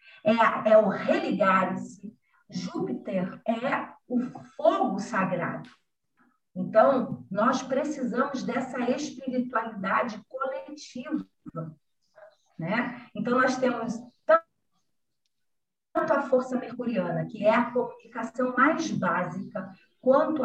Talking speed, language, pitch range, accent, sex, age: 90 wpm, Portuguese, 215-275 Hz, Brazilian, female, 40-59